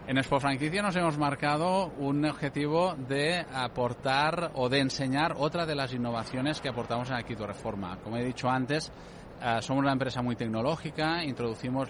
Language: Spanish